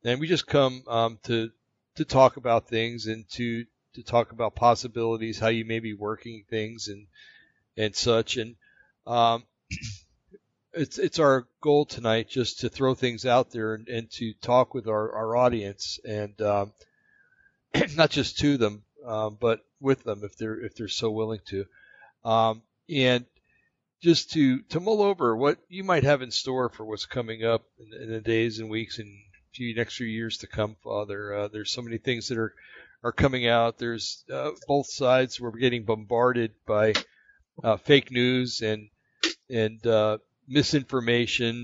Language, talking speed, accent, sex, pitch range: English, 170 wpm, American, male, 110-125 Hz